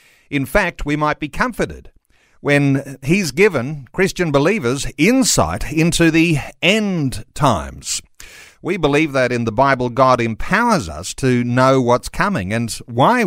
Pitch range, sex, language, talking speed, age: 125-170 Hz, male, English, 140 wpm, 50-69